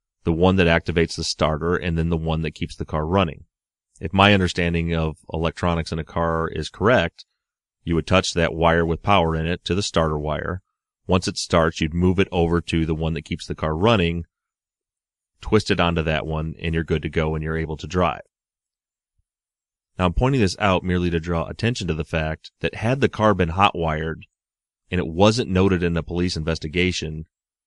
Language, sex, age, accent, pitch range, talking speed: English, male, 30-49, American, 80-95 Hz, 205 wpm